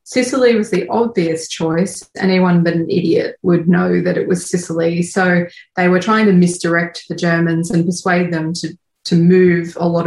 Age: 20-39